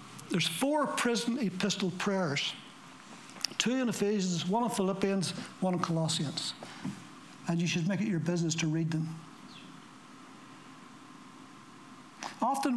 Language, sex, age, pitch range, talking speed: English, male, 60-79, 165-210 Hz, 115 wpm